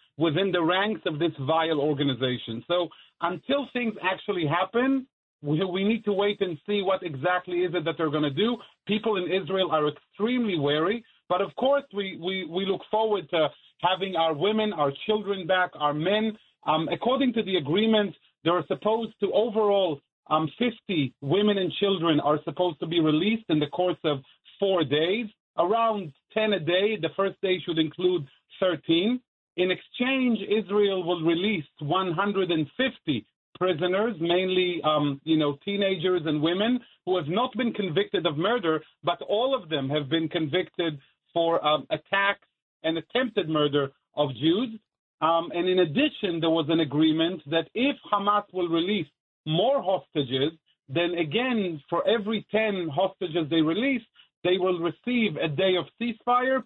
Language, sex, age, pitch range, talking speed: English, male, 40-59, 160-205 Hz, 160 wpm